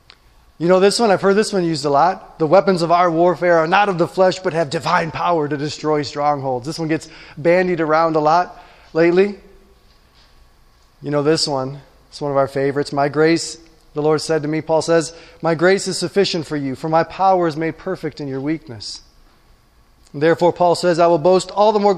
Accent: American